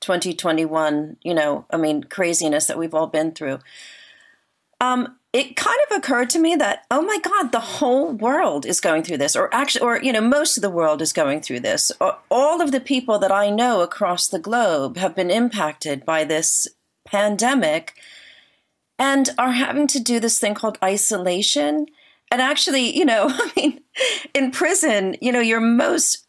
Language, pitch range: English, 180-265 Hz